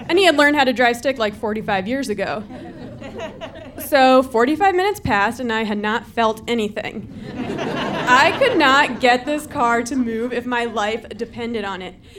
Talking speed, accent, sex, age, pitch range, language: 175 wpm, American, female, 20-39, 230-290 Hz, English